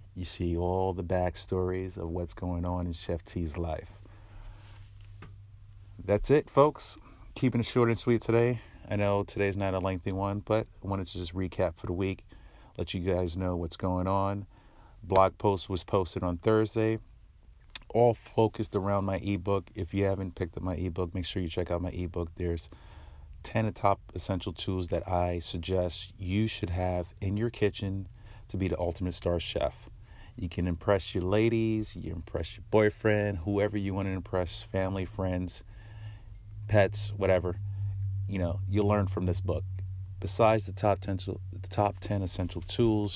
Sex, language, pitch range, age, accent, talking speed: male, English, 90-100 Hz, 30-49, American, 175 wpm